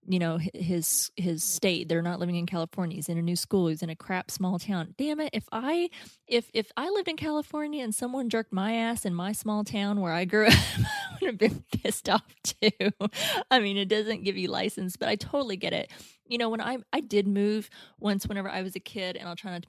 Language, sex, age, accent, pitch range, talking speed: English, female, 20-39, American, 175-215 Hz, 245 wpm